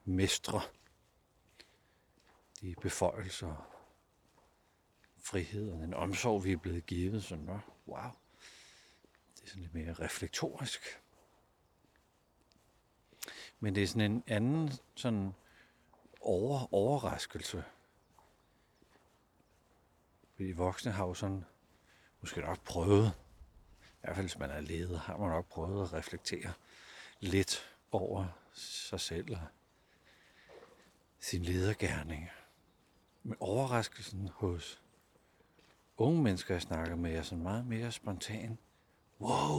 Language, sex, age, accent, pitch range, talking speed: Danish, male, 60-79, native, 85-110 Hz, 105 wpm